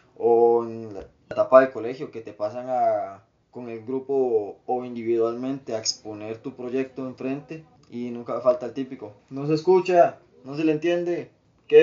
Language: Spanish